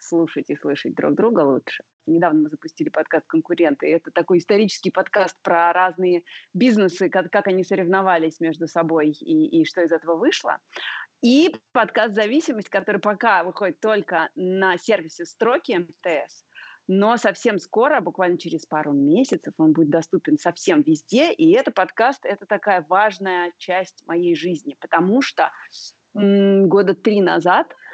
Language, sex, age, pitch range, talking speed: Russian, female, 30-49, 180-270 Hz, 145 wpm